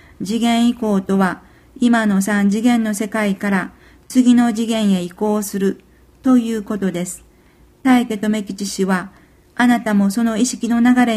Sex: female